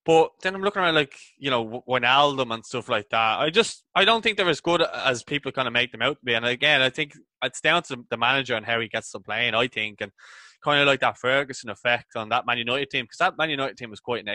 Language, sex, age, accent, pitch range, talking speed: English, male, 20-39, Irish, 110-140 Hz, 280 wpm